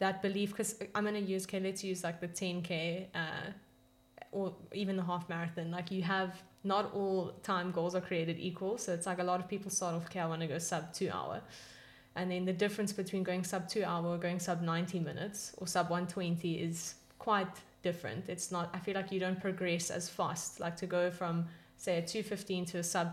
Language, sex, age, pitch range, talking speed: English, female, 10-29, 170-195 Hz, 225 wpm